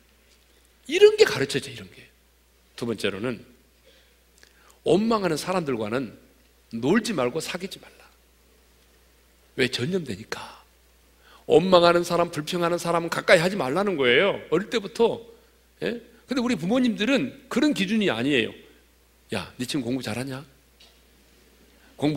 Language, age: Korean, 40-59